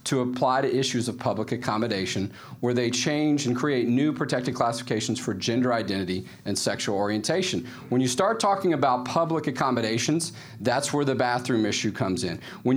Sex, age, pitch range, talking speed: male, 40-59, 115-140 Hz, 170 wpm